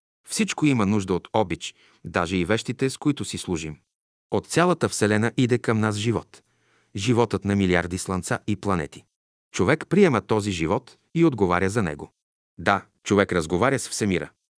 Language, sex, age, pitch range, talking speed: Bulgarian, male, 40-59, 95-120 Hz, 155 wpm